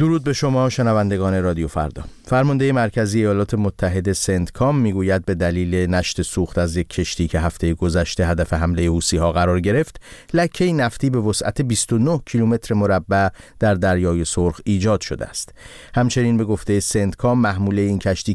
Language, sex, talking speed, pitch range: Persian, male, 160 wpm, 95-120 Hz